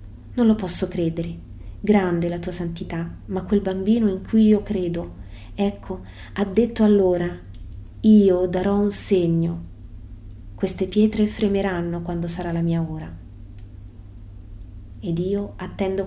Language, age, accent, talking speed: Italian, 30-49, native, 125 wpm